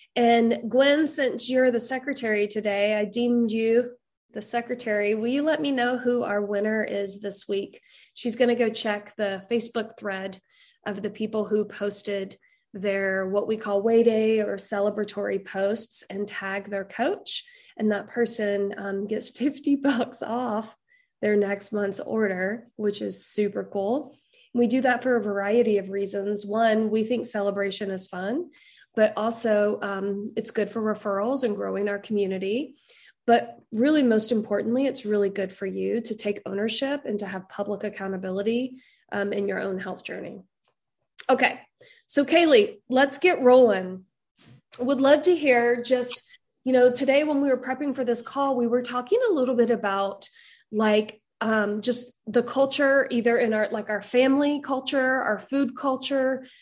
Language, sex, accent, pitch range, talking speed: English, female, American, 205-255 Hz, 165 wpm